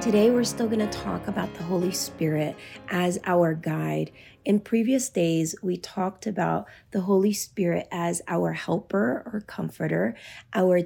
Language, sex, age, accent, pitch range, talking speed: English, female, 20-39, American, 165-210 Hz, 150 wpm